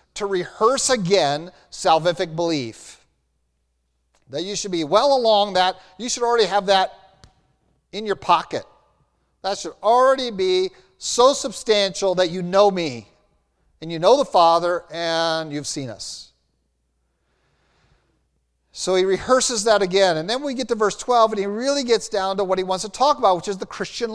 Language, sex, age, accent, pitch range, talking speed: English, male, 50-69, American, 180-255 Hz, 165 wpm